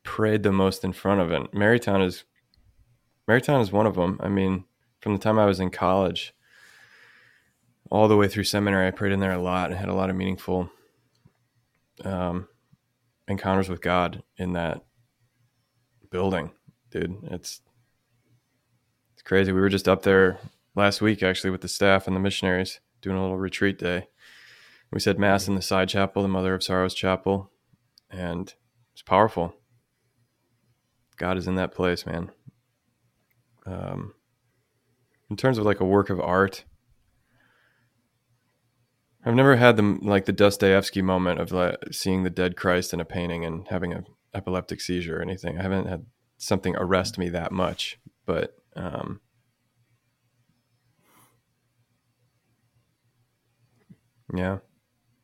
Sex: male